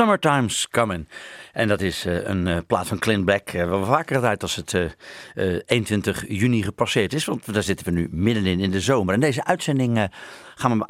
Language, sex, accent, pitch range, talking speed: English, male, Dutch, 95-120 Hz, 230 wpm